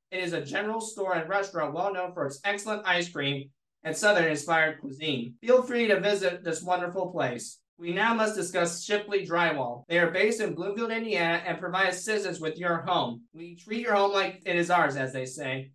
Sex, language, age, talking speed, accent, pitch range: male, English, 30-49, 200 wpm, American, 160-200 Hz